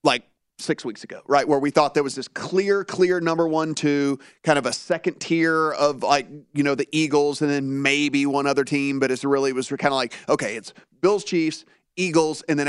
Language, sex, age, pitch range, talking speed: English, male, 30-49, 140-165 Hz, 230 wpm